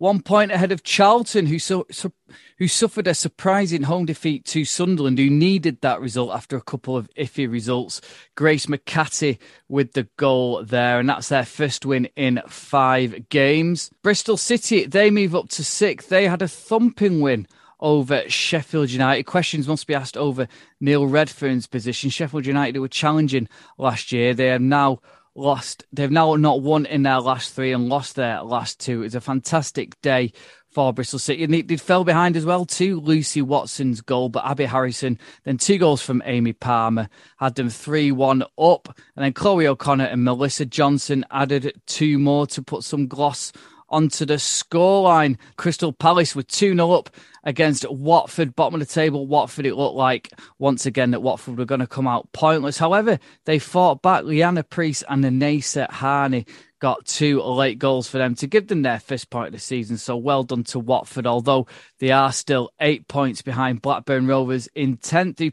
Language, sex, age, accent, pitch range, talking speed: English, male, 20-39, British, 130-160 Hz, 185 wpm